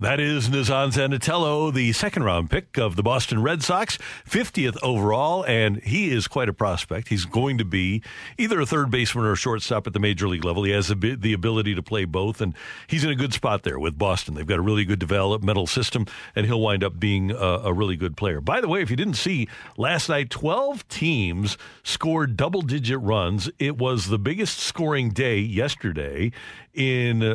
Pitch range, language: 105-140 Hz, English